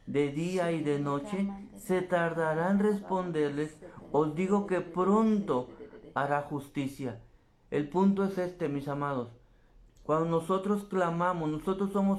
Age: 50-69